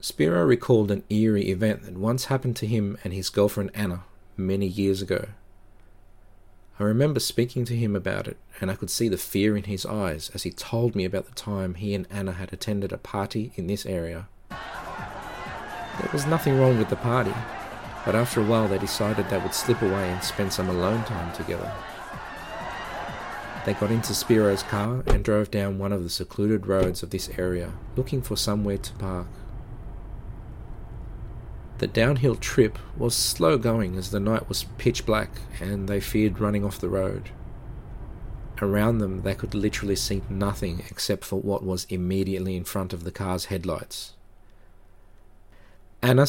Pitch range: 95-110 Hz